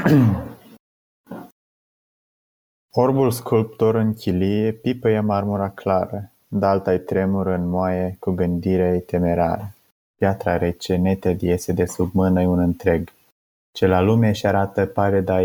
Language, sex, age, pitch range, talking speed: Romanian, male, 20-39, 90-100 Hz, 115 wpm